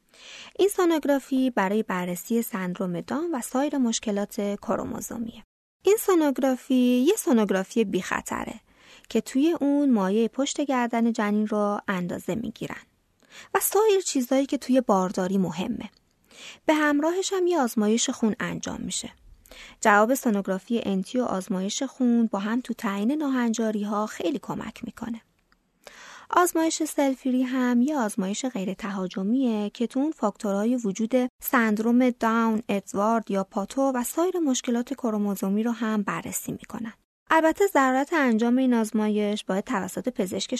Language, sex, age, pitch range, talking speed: Persian, female, 30-49, 205-265 Hz, 130 wpm